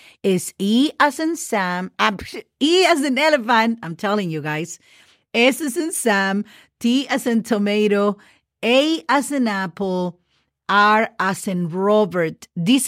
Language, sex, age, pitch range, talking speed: English, female, 40-59, 195-270 Hz, 140 wpm